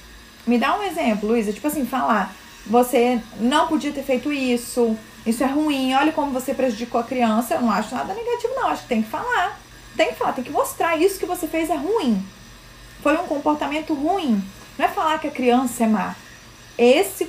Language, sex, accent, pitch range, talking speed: Portuguese, female, Brazilian, 235-300 Hz, 205 wpm